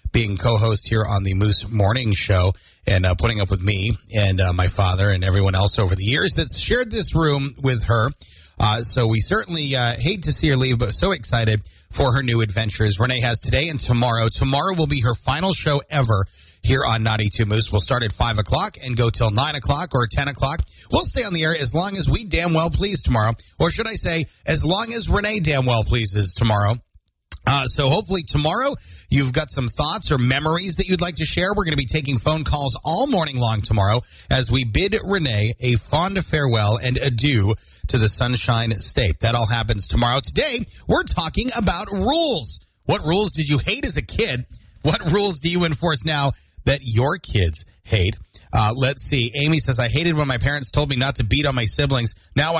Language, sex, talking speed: English, male, 215 wpm